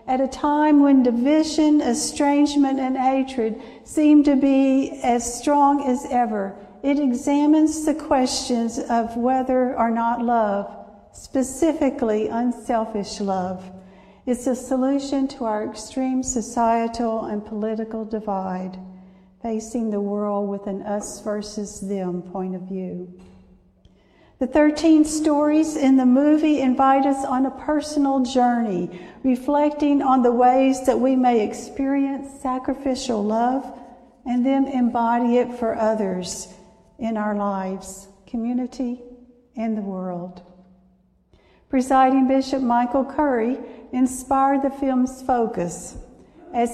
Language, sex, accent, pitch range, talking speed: English, female, American, 210-265 Hz, 115 wpm